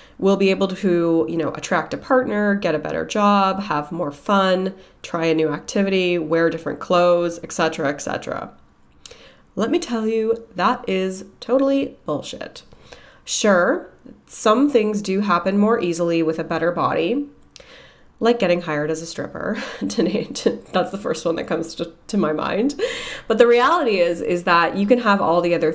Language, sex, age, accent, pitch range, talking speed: English, female, 20-39, American, 155-195 Hz, 165 wpm